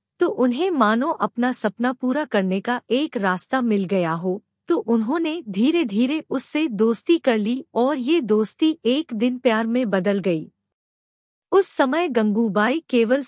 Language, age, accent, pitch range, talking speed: English, 50-69, Indian, 220-300 Hz, 150 wpm